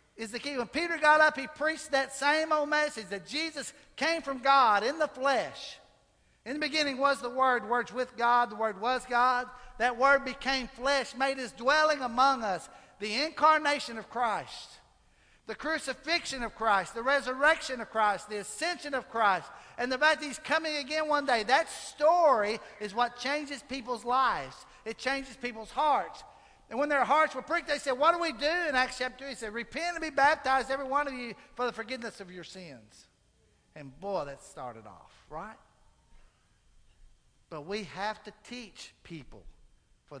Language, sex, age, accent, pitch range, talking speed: English, male, 60-79, American, 230-295 Hz, 185 wpm